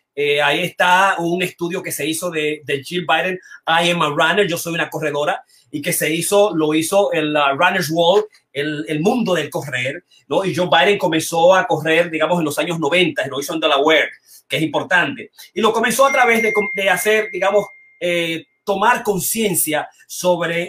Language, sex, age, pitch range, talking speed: Spanish, male, 30-49, 155-190 Hz, 195 wpm